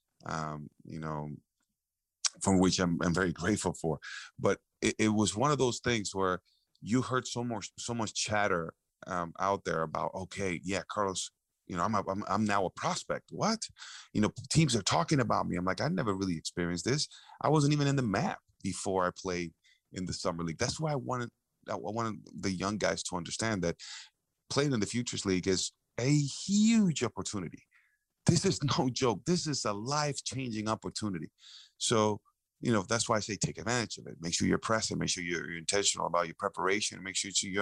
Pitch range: 90-120 Hz